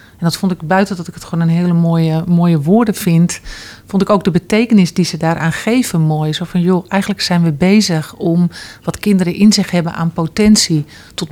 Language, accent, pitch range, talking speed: Dutch, Dutch, 165-205 Hz, 215 wpm